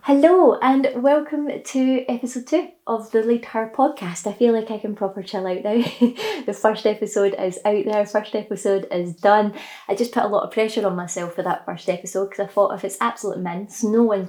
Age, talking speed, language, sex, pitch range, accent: 20-39, 220 wpm, English, female, 190-235 Hz, British